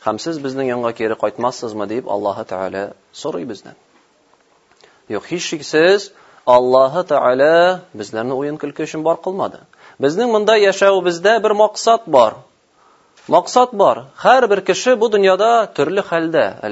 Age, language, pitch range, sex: 30-49, Russian, 125-185 Hz, male